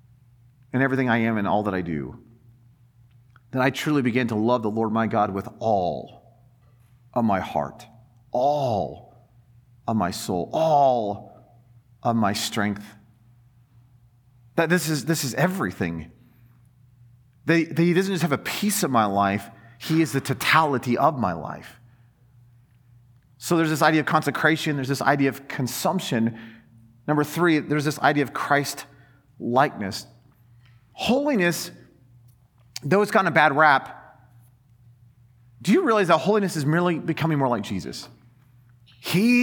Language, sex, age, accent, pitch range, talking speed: English, male, 40-59, American, 120-180 Hz, 145 wpm